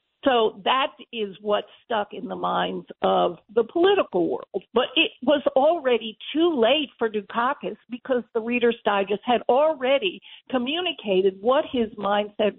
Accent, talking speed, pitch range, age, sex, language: American, 145 wpm, 225-305 Hz, 50-69, female, English